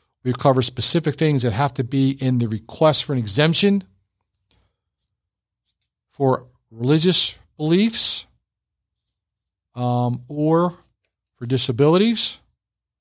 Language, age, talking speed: English, 50-69, 95 wpm